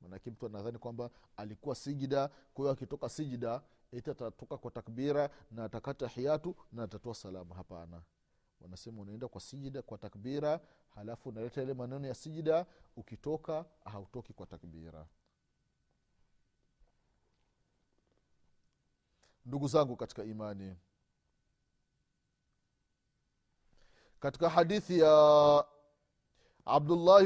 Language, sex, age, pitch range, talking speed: Swahili, male, 40-59, 110-145 Hz, 95 wpm